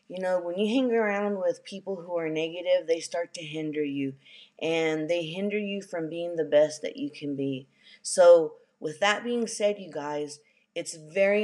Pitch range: 165-205 Hz